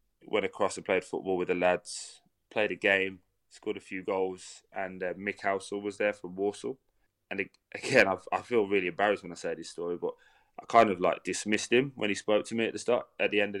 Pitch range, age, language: 95-115 Hz, 20-39, English